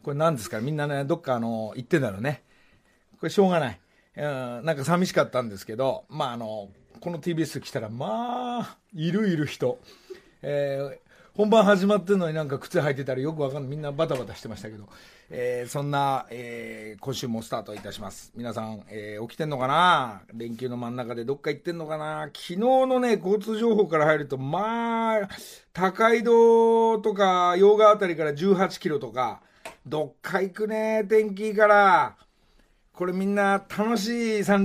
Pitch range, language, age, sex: 130-205 Hz, Japanese, 40-59, male